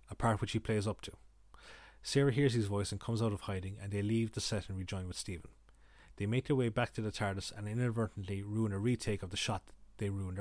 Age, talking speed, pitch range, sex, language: 30-49, 250 wpm, 100-115 Hz, male, English